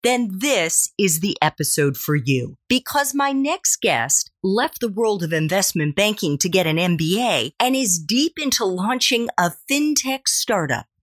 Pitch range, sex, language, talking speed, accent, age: 165-265 Hz, female, English, 160 wpm, American, 40-59